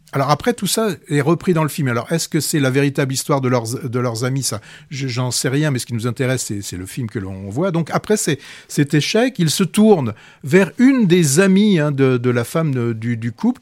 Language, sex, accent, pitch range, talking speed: French, male, French, 135-180 Hz, 255 wpm